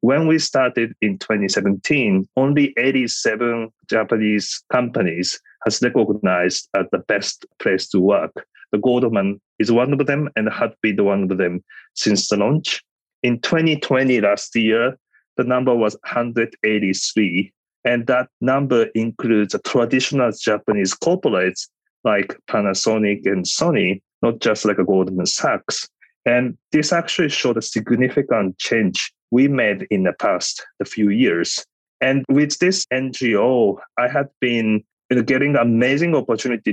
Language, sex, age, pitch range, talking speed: English, male, 30-49, 105-130 Hz, 140 wpm